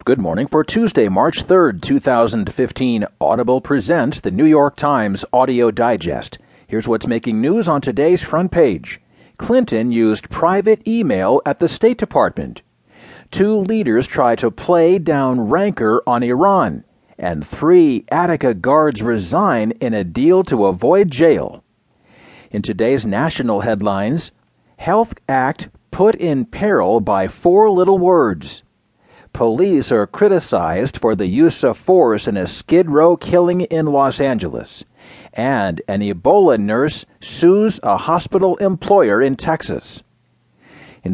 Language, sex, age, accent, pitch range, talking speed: English, male, 40-59, American, 125-190 Hz, 135 wpm